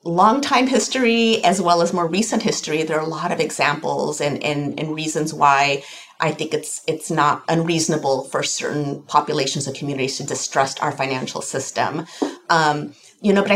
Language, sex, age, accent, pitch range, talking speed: English, female, 30-49, American, 155-190 Hz, 175 wpm